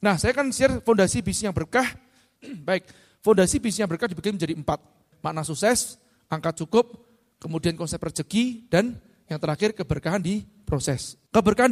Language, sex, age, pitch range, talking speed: Indonesian, male, 30-49, 155-220 Hz, 155 wpm